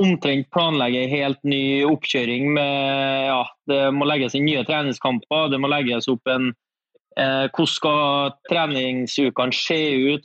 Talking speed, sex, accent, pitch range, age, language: 135 wpm, male, Swedish, 130-150 Hz, 20-39, English